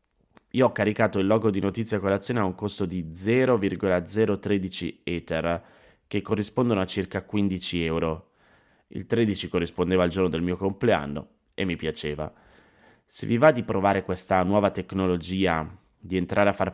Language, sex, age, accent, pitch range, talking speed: Italian, male, 20-39, native, 90-110 Hz, 155 wpm